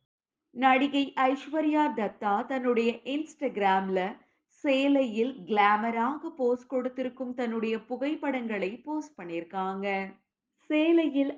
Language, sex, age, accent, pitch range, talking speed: Tamil, female, 20-39, native, 225-290 Hz, 75 wpm